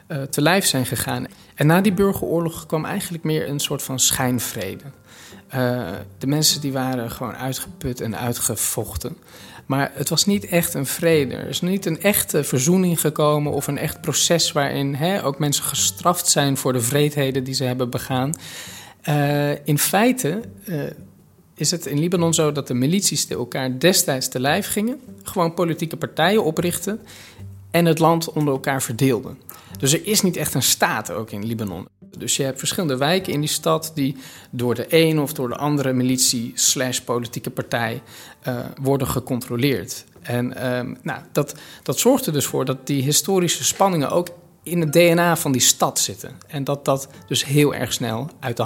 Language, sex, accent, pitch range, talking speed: Dutch, male, Dutch, 125-165 Hz, 180 wpm